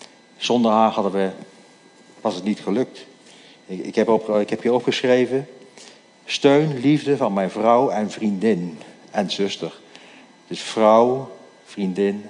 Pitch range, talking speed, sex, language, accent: 95-120 Hz, 125 wpm, male, Dutch, Dutch